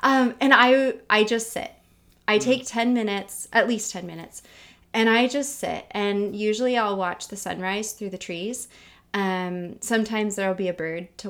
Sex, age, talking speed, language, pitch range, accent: female, 20-39, 185 wpm, English, 185-225 Hz, American